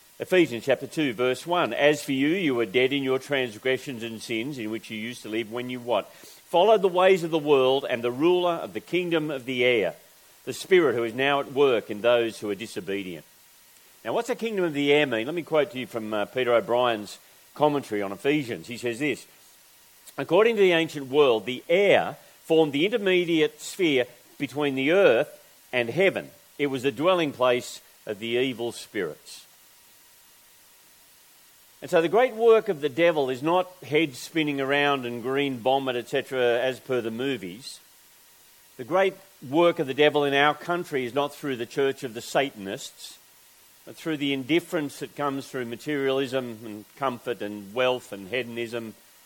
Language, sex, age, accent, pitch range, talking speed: English, male, 40-59, Australian, 120-155 Hz, 185 wpm